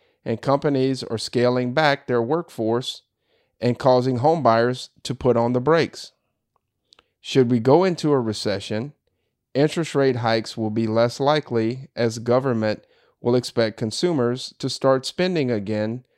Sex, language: male, English